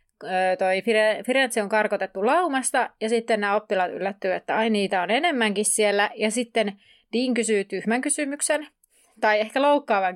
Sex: female